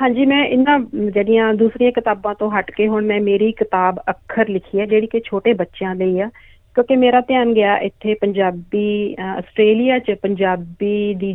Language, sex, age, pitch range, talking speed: Punjabi, female, 40-59, 195-240 Hz, 170 wpm